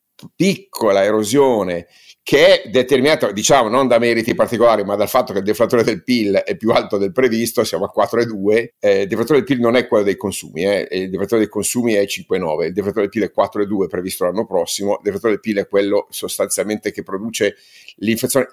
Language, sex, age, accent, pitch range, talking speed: Italian, male, 50-69, native, 95-120 Hz, 200 wpm